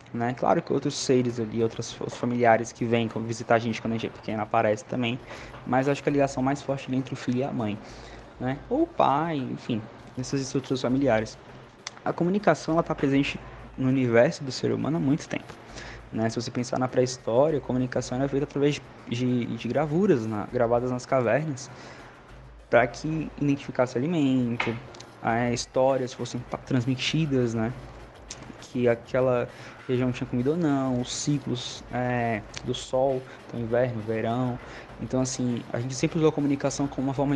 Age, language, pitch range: 20-39, Portuguese, 120-135 Hz